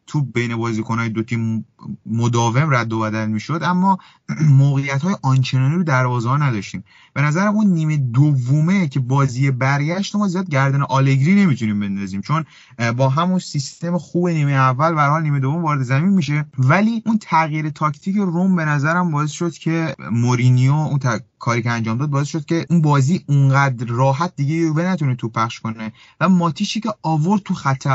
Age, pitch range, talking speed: 30-49, 115-155 Hz, 170 wpm